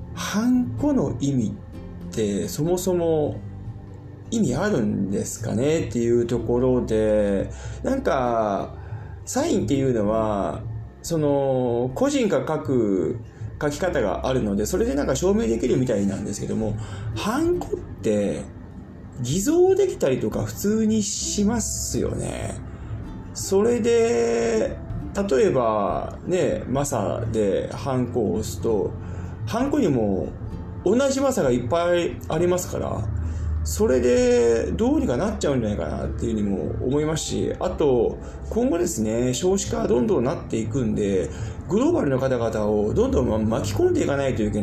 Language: Japanese